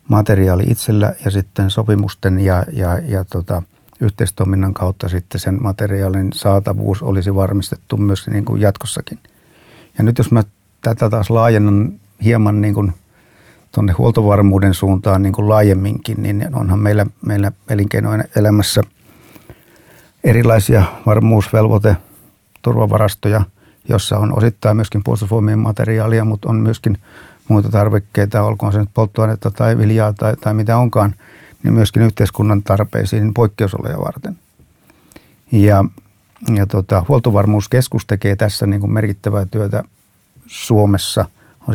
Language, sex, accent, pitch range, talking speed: Finnish, male, native, 100-110 Hz, 120 wpm